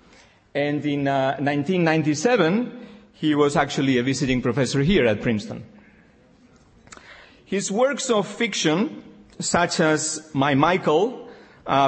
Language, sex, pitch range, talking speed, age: English, male, 140-175 Hz, 110 wpm, 40-59